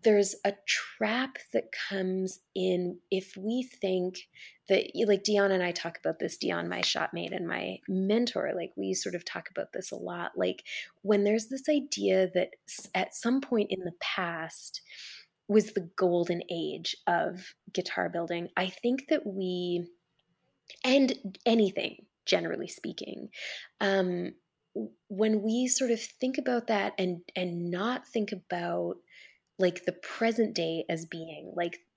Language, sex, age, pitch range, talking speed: English, female, 20-39, 175-215 Hz, 150 wpm